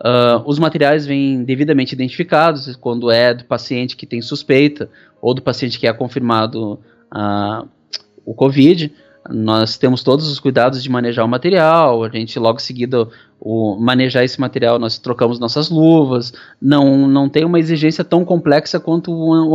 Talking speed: 155 wpm